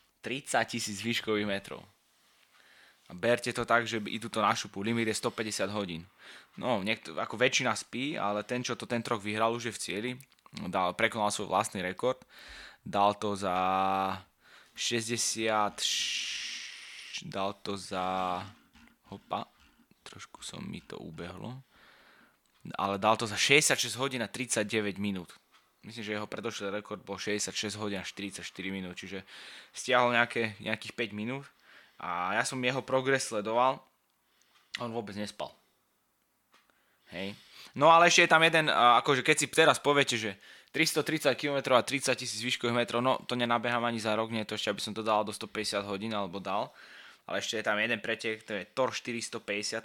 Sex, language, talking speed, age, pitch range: male, Slovak, 165 wpm, 20-39, 100-120 Hz